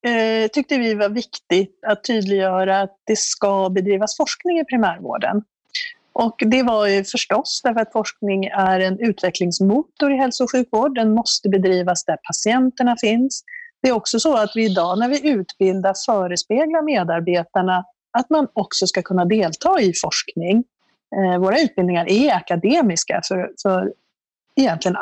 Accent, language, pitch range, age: native, Swedish, 190-270 Hz, 40-59